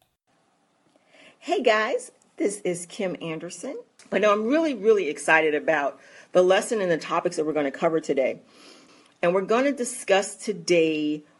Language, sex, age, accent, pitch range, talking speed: English, female, 40-59, American, 165-220 Hz, 145 wpm